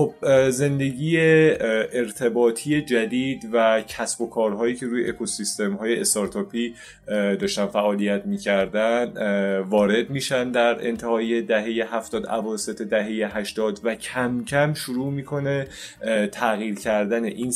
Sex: male